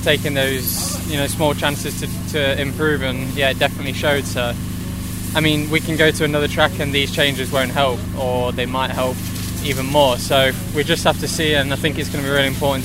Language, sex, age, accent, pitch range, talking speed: English, male, 20-39, British, 90-135 Hz, 230 wpm